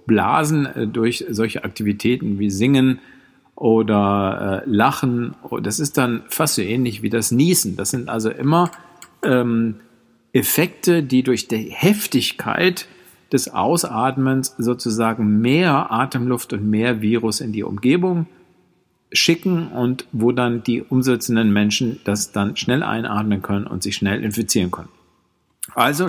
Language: German